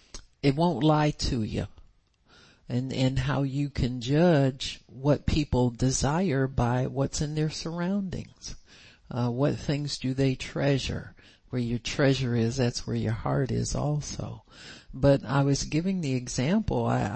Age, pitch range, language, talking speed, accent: 60-79, 115-140 Hz, English, 145 wpm, American